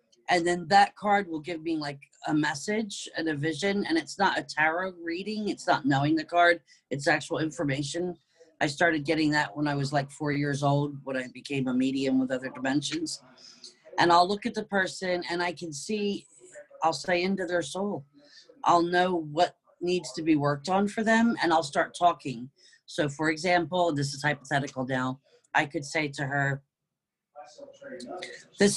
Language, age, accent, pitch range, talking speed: English, 40-59, American, 140-180 Hz, 185 wpm